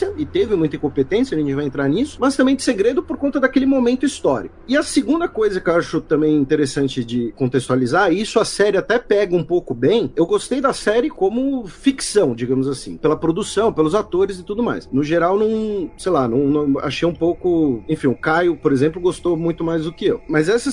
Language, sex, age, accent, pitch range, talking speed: Portuguese, male, 40-59, Brazilian, 150-225 Hz, 220 wpm